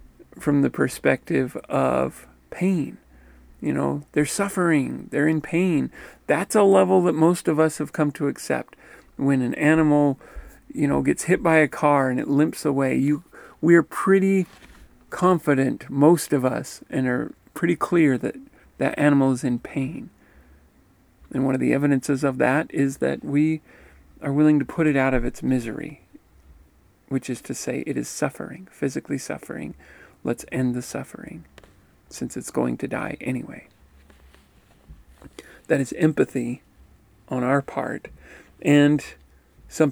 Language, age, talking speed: English, 40-59, 150 wpm